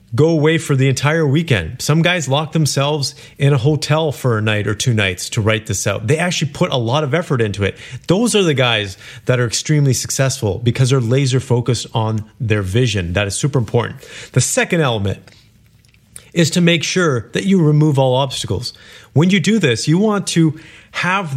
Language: English